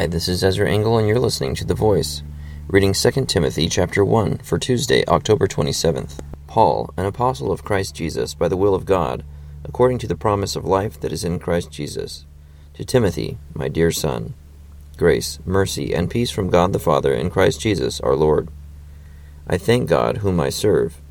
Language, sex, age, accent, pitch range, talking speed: English, male, 30-49, American, 75-100 Hz, 185 wpm